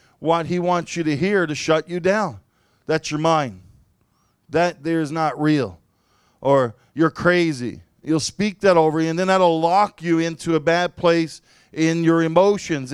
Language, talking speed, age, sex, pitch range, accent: English, 165 wpm, 40-59, male, 125-165 Hz, American